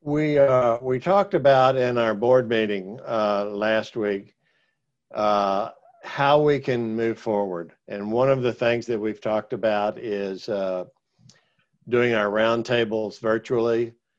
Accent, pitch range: American, 105-120 Hz